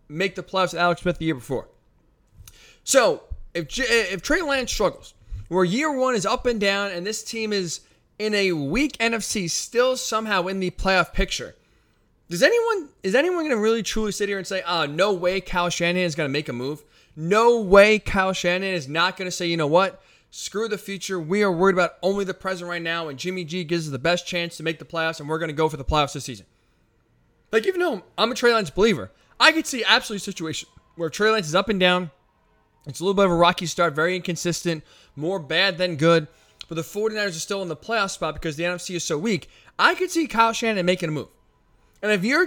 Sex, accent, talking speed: male, American, 235 wpm